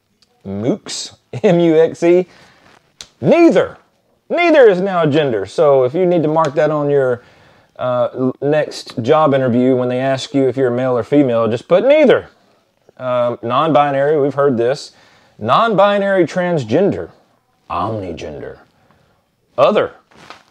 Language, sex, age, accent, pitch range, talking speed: English, male, 30-49, American, 125-175 Hz, 125 wpm